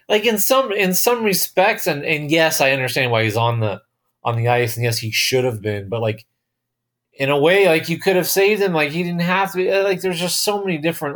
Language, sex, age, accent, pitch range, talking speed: English, male, 30-49, American, 115-165 Hz, 255 wpm